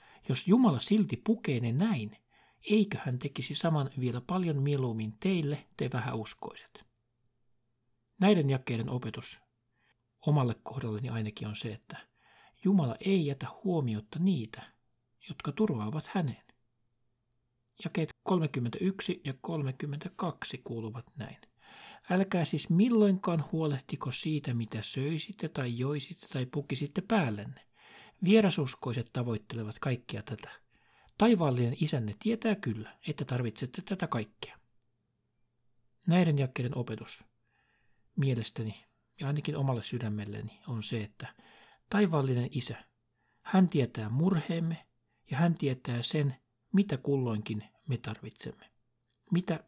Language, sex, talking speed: Finnish, male, 105 wpm